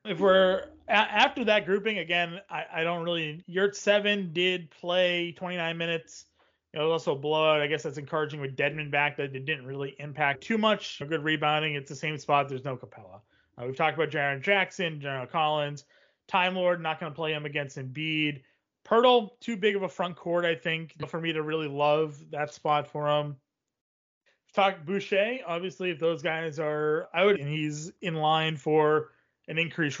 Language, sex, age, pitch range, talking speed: English, male, 20-39, 145-175 Hz, 190 wpm